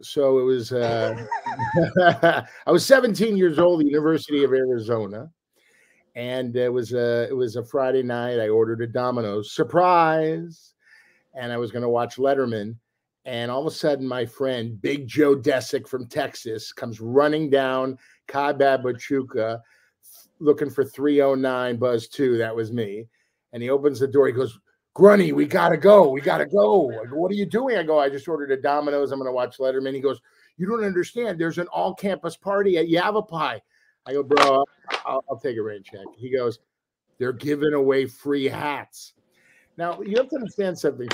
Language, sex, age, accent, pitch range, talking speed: English, male, 50-69, American, 125-165 Hz, 180 wpm